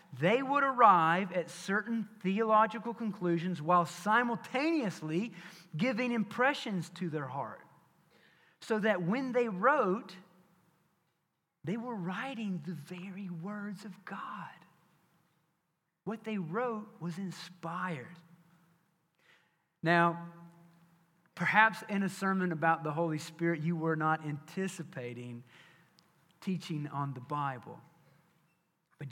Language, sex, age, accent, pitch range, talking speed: English, male, 40-59, American, 160-190 Hz, 105 wpm